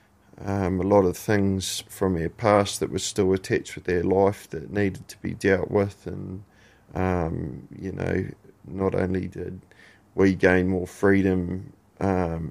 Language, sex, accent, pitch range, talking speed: English, male, Australian, 95-100 Hz, 160 wpm